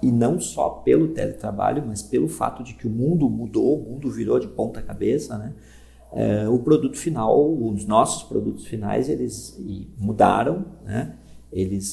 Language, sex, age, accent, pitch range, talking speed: Portuguese, male, 50-69, Brazilian, 105-135 Hz, 160 wpm